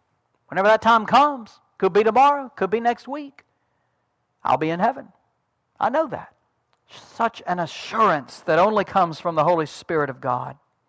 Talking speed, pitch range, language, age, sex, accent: 165 wpm, 165-275 Hz, English, 60-79, male, American